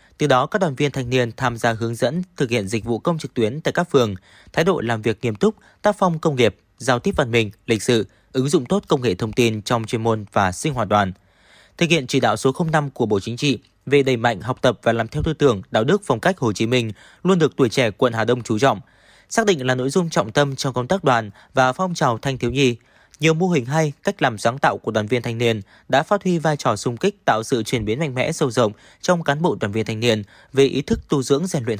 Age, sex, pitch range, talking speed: 20-39, male, 115-150 Hz, 275 wpm